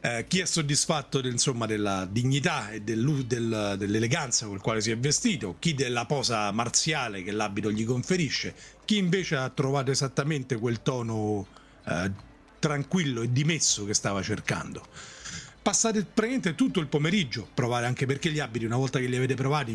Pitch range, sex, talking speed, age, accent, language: 110-155 Hz, male, 165 wpm, 40-59, native, Italian